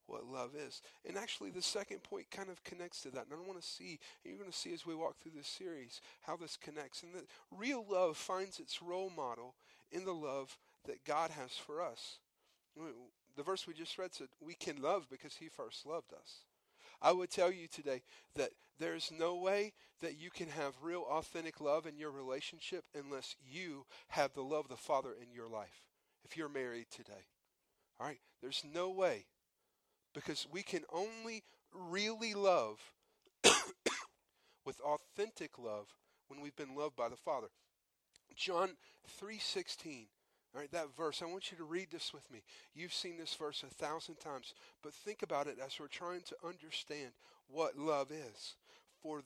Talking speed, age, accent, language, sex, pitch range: 180 wpm, 40-59, American, English, male, 140-185 Hz